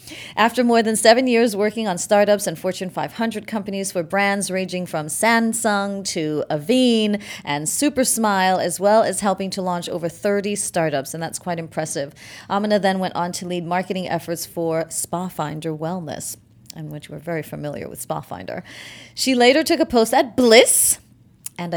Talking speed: 170 wpm